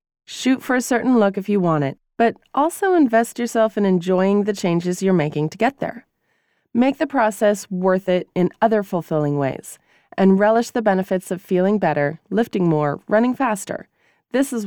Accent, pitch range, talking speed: American, 180-245 Hz, 180 wpm